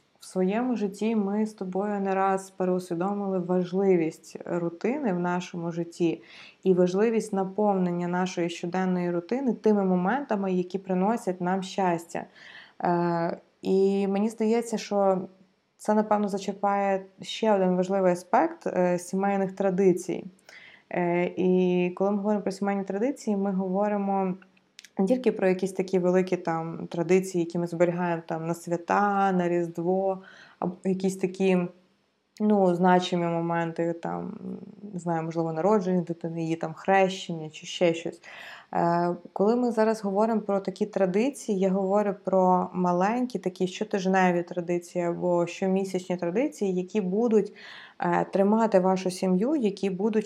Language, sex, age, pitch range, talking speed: Ukrainian, female, 20-39, 180-200 Hz, 130 wpm